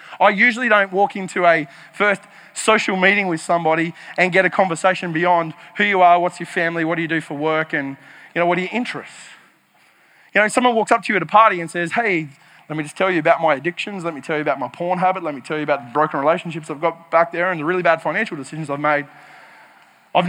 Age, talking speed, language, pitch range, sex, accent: 20-39, 250 wpm, English, 165-205 Hz, male, Australian